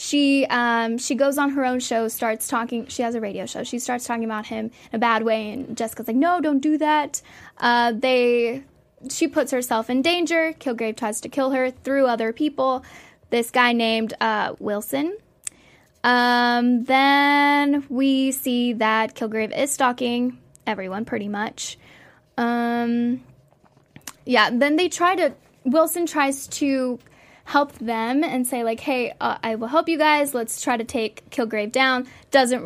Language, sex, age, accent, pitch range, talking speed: English, female, 10-29, American, 230-285 Hz, 165 wpm